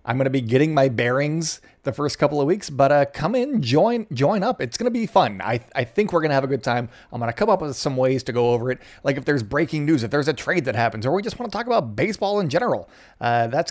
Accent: American